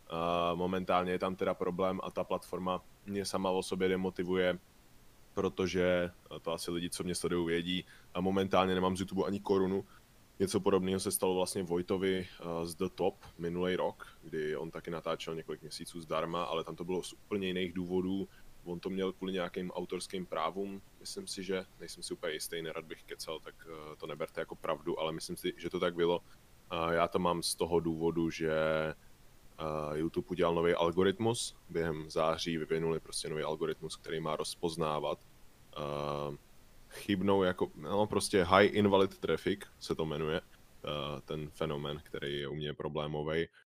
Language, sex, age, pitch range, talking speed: Czech, male, 20-39, 80-95 Hz, 165 wpm